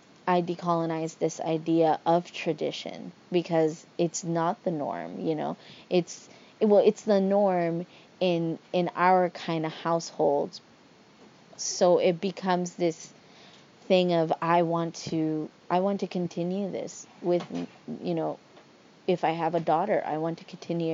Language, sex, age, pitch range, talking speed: English, female, 20-39, 165-185 Hz, 145 wpm